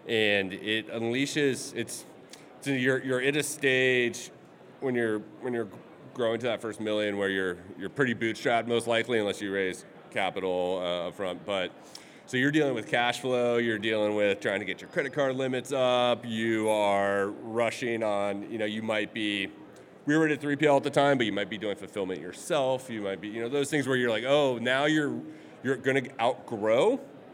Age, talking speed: 30-49, 200 wpm